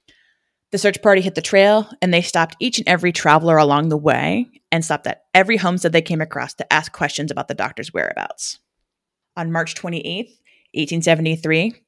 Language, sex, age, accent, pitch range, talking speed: English, female, 20-39, American, 150-185 Hz, 175 wpm